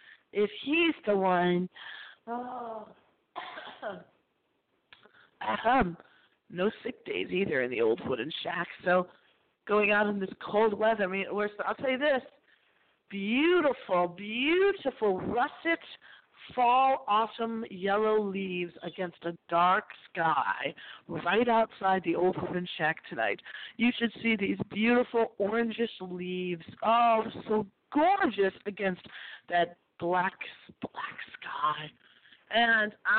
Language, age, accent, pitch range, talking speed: English, 50-69, American, 190-260 Hz, 115 wpm